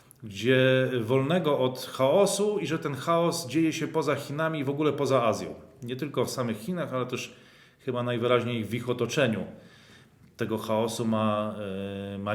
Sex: male